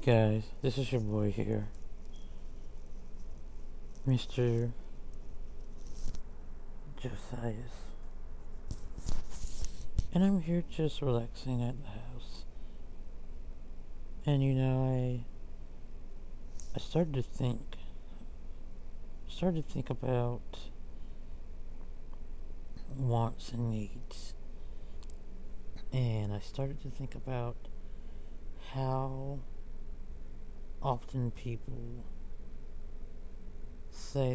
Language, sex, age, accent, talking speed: English, male, 60-79, American, 70 wpm